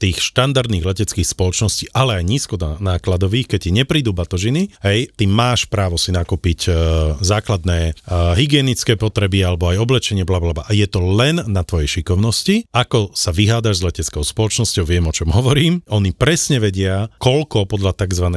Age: 40-59